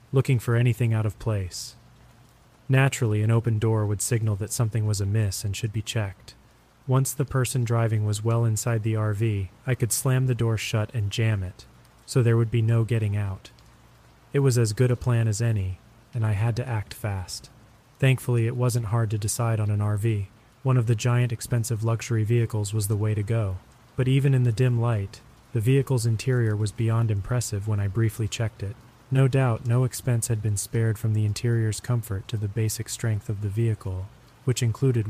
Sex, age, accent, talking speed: male, 30-49, American, 200 wpm